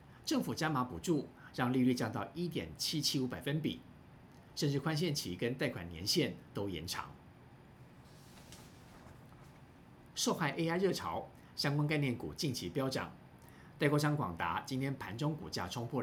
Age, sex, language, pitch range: 50-69, male, Chinese, 115-155 Hz